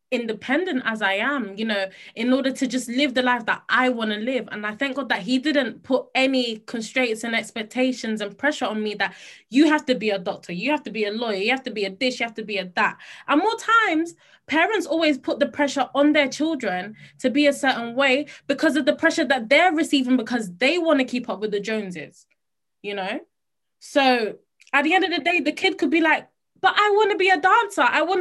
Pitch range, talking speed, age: 230-310 Hz, 245 wpm, 20-39